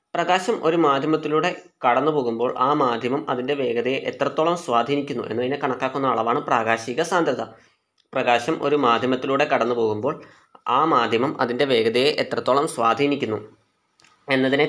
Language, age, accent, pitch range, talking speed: Malayalam, 20-39, native, 125-155 Hz, 110 wpm